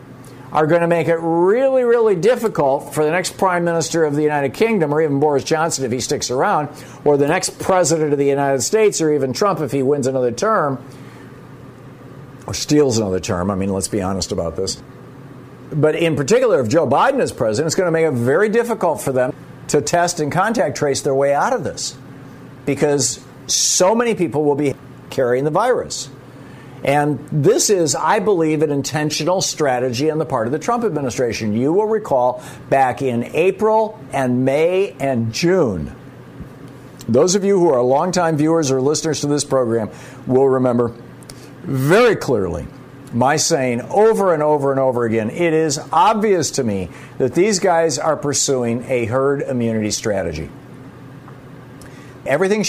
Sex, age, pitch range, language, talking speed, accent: male, 50-69, 130-165 Hz, English, 175 wpm, American